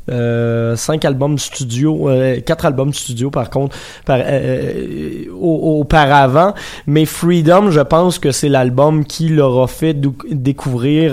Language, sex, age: French, male, 20-39